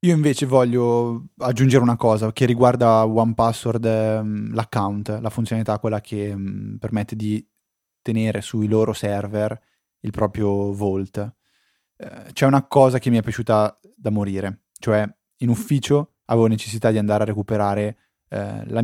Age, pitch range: 20-39, 100-120 Hz